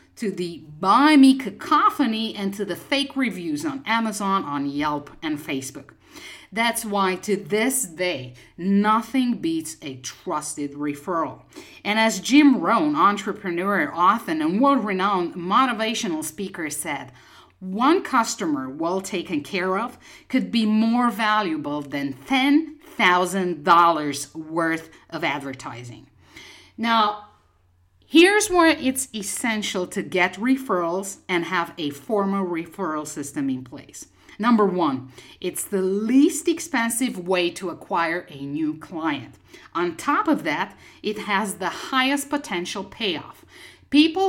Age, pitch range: 50-69, 160-240 Hz